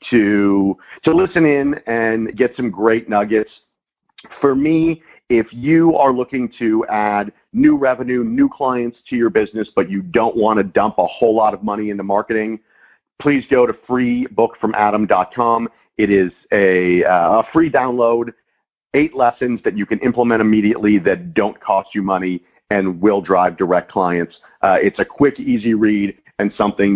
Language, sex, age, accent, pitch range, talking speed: English, male, 50-69, American, 100-130 Hz, 160 wpm